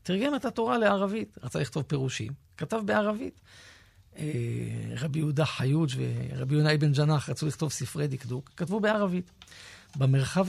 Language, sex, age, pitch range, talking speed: Hebrew, male, 40-59, 125-165 Hz, 130 wpm